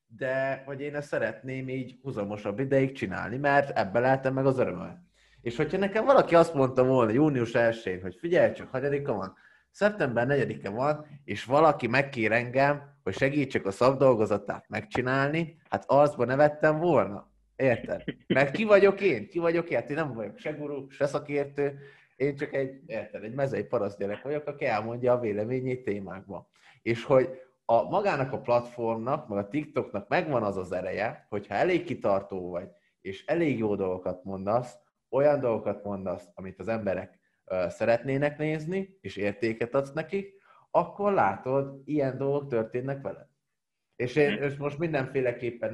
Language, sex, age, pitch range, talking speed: Hungarian, male, 30-49, 115-145 Hz, 155 wpm